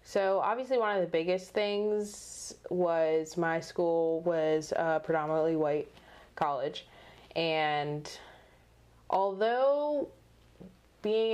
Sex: female